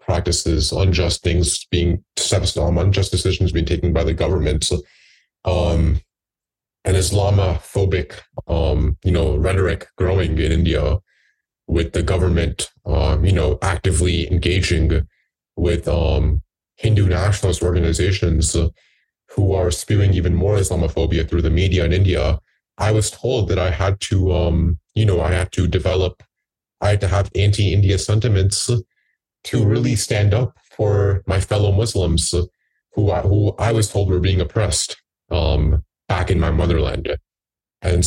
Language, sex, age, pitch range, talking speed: English, male, 20-39, 85-100 Hz, 140 wpm